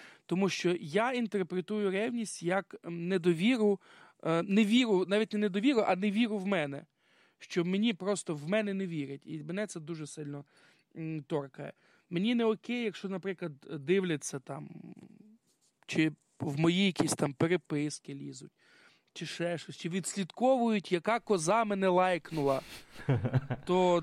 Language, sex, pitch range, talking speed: Ukrainian, male, 165-210 Hz, 135 wpm